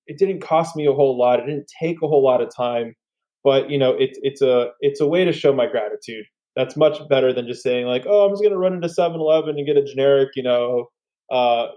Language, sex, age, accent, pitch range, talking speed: English, male, 20-39, American, 130-165 Hz, 260 wpm